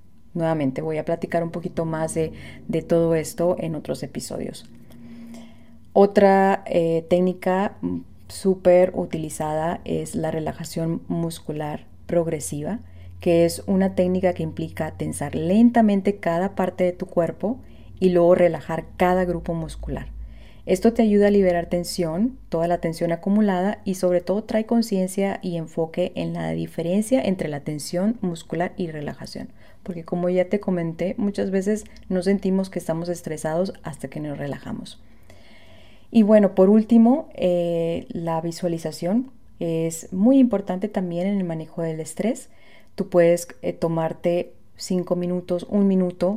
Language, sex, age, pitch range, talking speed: Spanish, female, 30-49, 160-190 Hz, 140 wpm